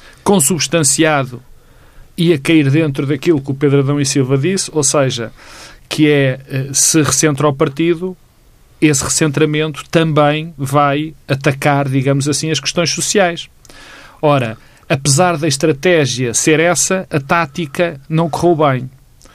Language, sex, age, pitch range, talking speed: Portuguese, male, 40-59, 135-165 Hz, 125 wpm